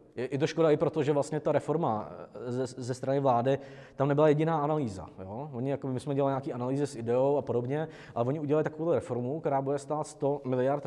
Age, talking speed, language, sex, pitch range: 20-39, 215 wpm, Czech, male, 120-150 Hz